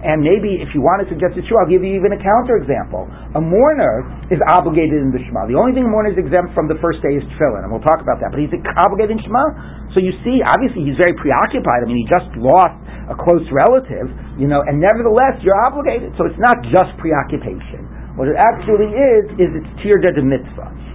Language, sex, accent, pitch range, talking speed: English, male, American, 140-195 Hz, 230 wpm